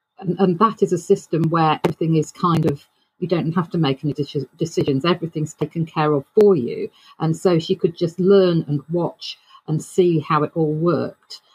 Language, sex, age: English, female, 40-59